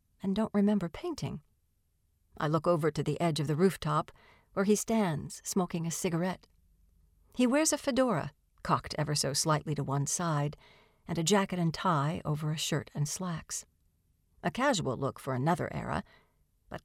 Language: English